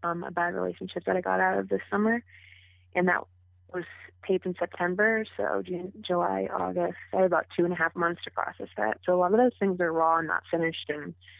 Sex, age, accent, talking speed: female, 20-39, American, 230 wpm